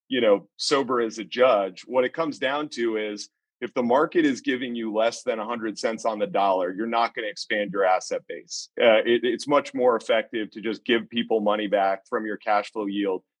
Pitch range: 110-145 Hz